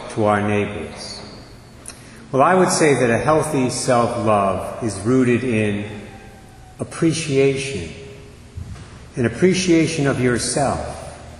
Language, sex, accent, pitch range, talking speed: English, male, American, 105-135 Hz, 100 wpm